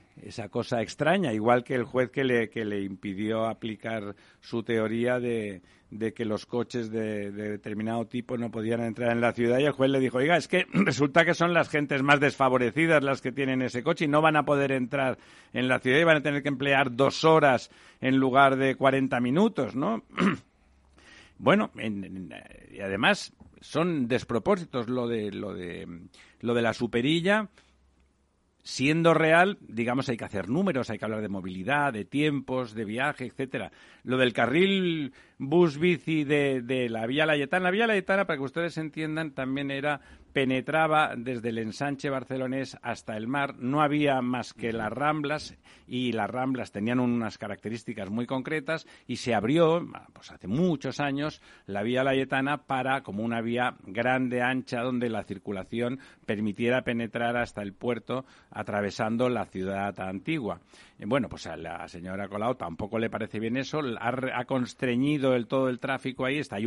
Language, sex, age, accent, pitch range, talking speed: Spanish, male, 60-79, Spanish, 115-145 Hz, 165 wpm